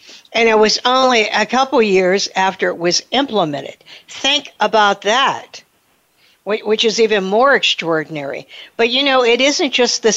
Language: English